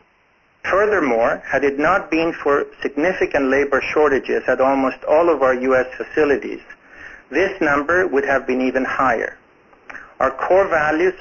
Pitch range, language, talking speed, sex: 135-175 Hz, English, 140 wpm, male